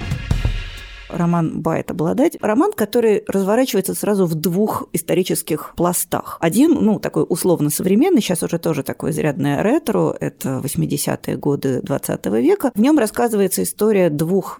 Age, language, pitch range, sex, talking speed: 30-49, Russian, 150-210 Hz, female, 125 wpm